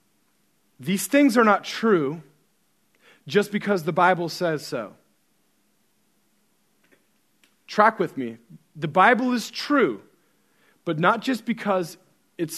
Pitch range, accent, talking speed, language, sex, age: 180-240 Hz, American, 110 wpm, English, male, 30-49